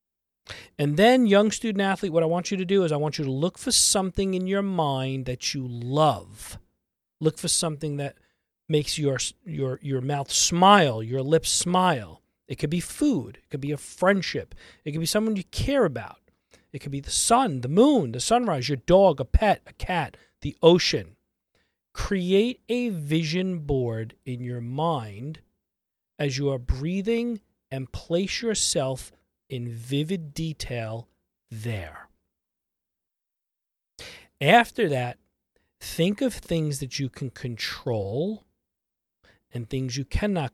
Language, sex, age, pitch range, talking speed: English, male, 40-59, 125-185 Hz, 150 wpm